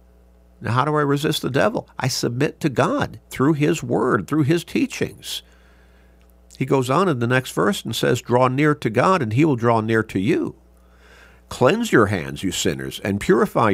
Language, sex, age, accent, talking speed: English, male, 50-69, American, 190 wpm